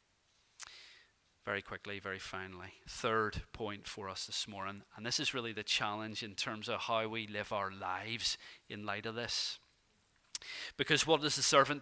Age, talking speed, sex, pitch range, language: 30-49, 170 wpm, male, 105-155 Hz, English